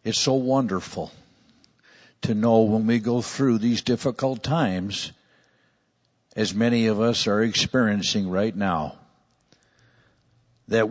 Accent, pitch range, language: American, 110-130 Hz, English